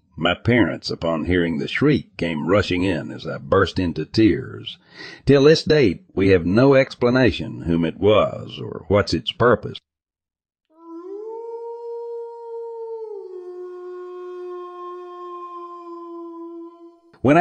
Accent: American